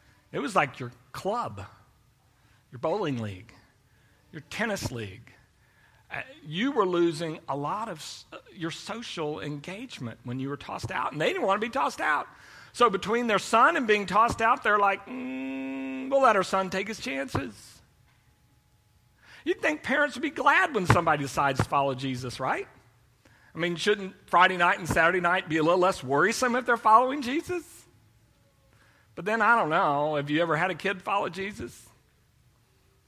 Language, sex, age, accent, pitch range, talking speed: English, male, 40-59, American, 120-190 Hz, 170 wpm